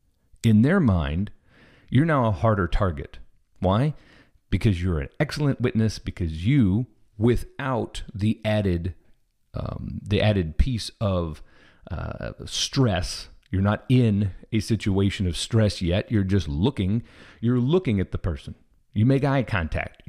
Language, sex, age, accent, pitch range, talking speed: English, male, 40-59, American, 90-120 Hz, 135 wpm